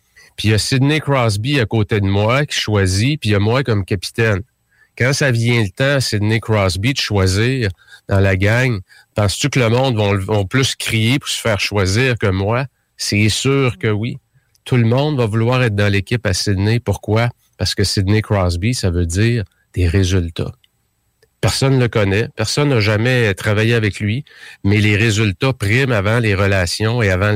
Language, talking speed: French, 190 wpm